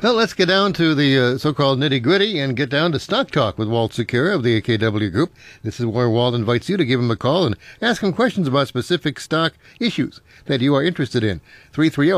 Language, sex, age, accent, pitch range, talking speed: English, male, 60-79, American, 120-160 Hz, 230 wpm